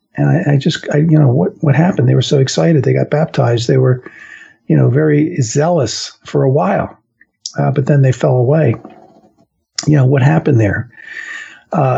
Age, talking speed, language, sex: 50-69, 190 wpm, English, male